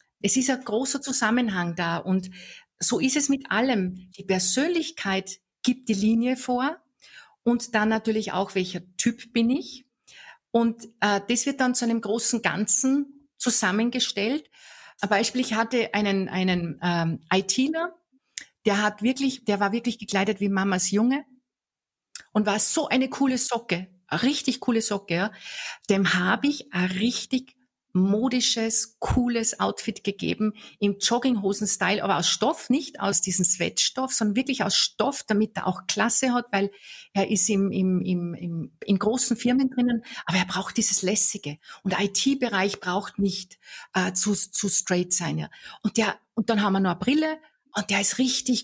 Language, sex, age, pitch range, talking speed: German, female, 50-69, 190-250 Hz, 160 wpm